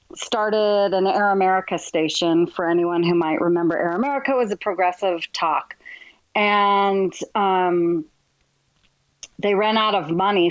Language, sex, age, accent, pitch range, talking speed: English, female, 30-49, American, 175-200 Hz, 130 wpm